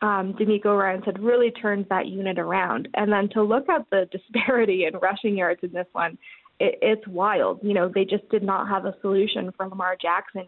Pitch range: 190-235 Hz